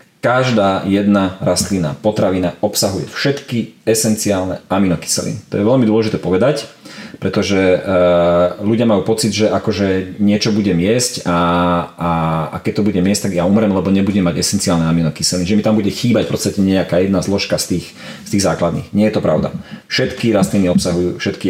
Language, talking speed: Slovak, 165 wpm